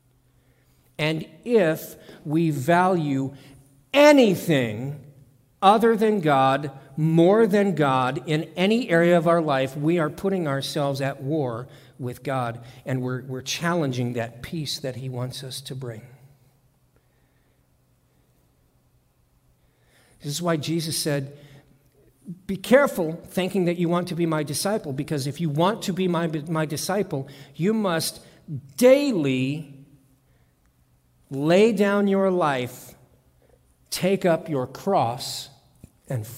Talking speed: 120 wpm